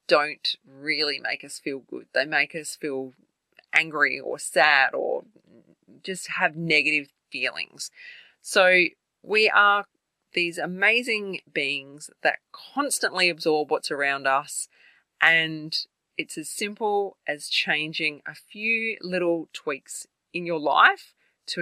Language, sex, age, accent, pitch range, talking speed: English, female, 20-39, Australian, 150-200 Hz, 120 wpm